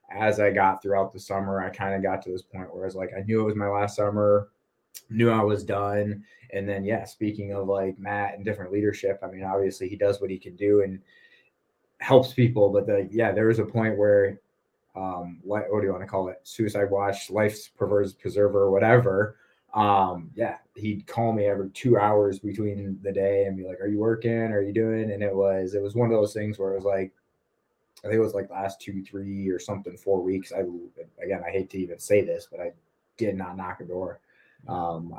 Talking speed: 225 wpm